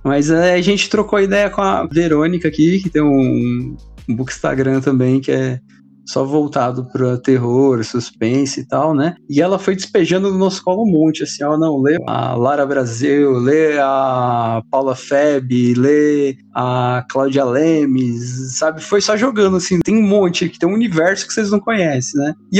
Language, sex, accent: Portuguese, male, Brazilian